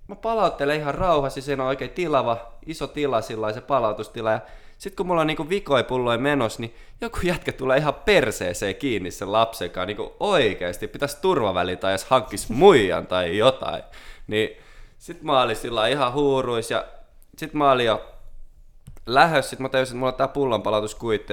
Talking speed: 175 wpm